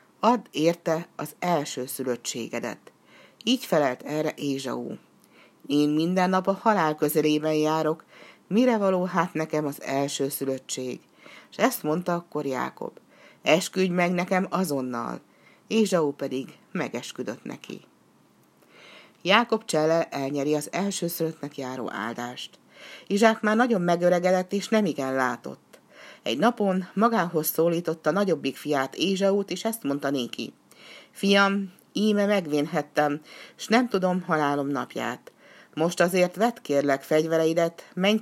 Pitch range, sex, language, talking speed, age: 145-190 Hz, female, Hungarian, 120 wpm, 60-79